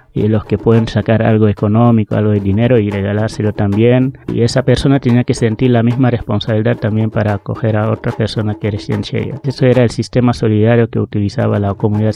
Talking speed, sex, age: 195 wpm, male, 20-39